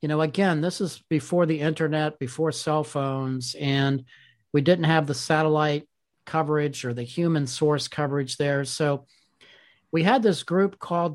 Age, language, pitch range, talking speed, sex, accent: 50-69, English, 135-170 Hz, 160 wpm, male, American